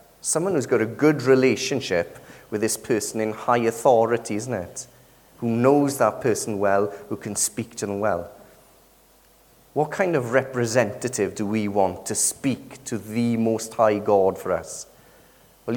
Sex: male